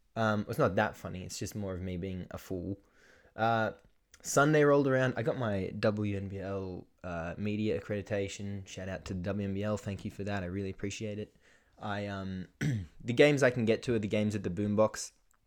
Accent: Australian